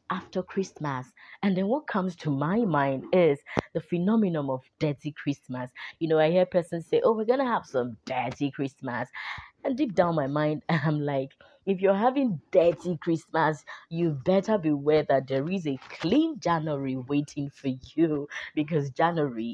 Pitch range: 140-195 Hz